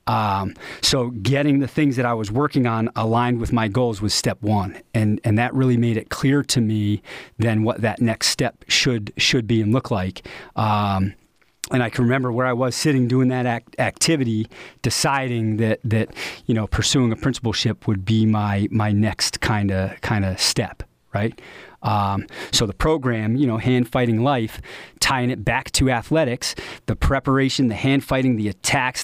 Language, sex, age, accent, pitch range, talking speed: English, male, 40-59, American, 110-130 Hz, 185 wpm